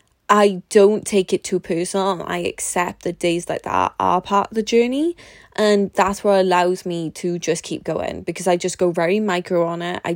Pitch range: 170-190 Hz